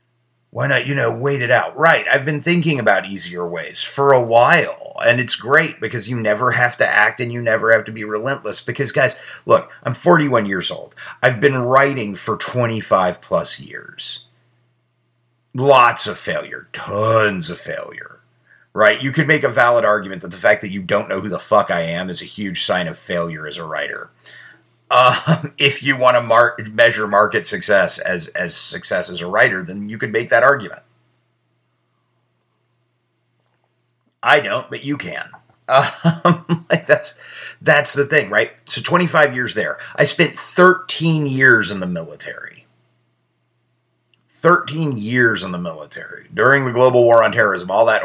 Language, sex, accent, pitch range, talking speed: English, male, American, 105-140 Hz, 170 wpm